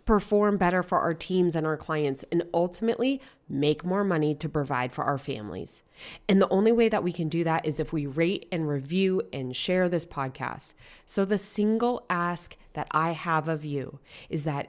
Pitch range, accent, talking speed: 160-210 Hz, American, 195 wpm